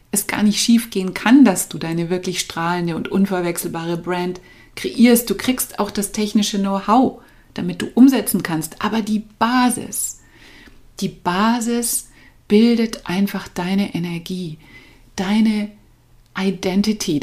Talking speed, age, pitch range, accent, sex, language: 120 wpm, 30-49, 170-215 Hz, German, female, German